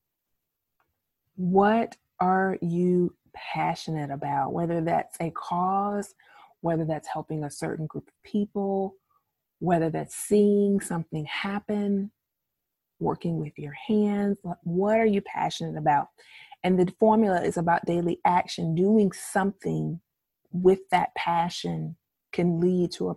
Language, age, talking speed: English, 30-49, 120 wpm